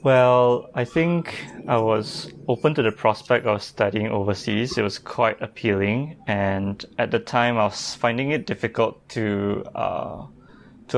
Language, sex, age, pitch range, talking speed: English, male, 20-39, 105-120 Hz, 155 wpm